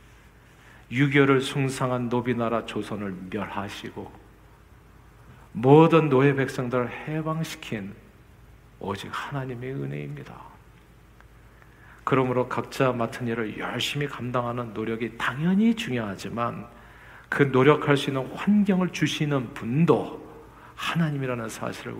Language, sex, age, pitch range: Korean, male, 50-69, 110-140 Hz